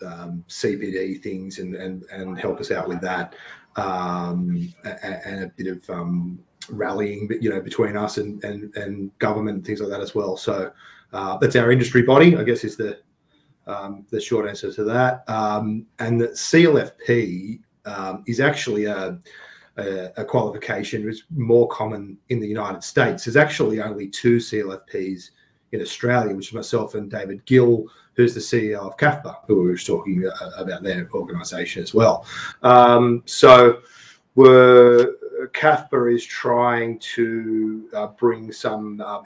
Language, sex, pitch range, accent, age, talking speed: English, male, 100-120 Hz, Australian, 30-49, 165 wpm